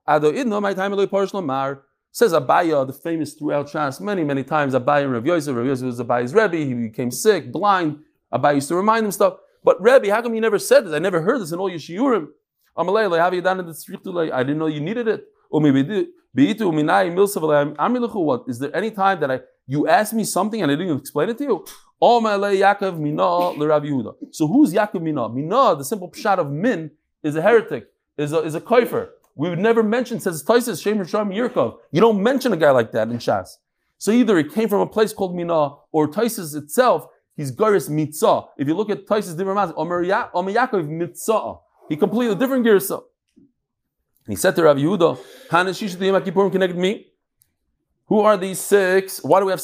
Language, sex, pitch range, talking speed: English, male, 150-220 Hz, 180 wpm